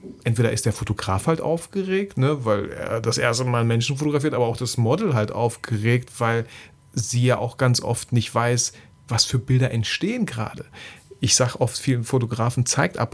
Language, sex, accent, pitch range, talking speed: German, male, German, 110-130 Hz, 185 wpm